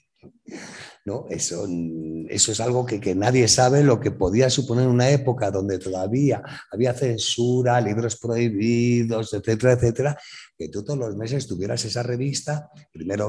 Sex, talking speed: male, 145 wpm